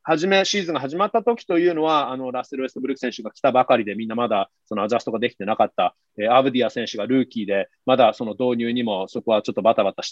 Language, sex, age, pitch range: Japanese, male, 30-49, 120-175 Hz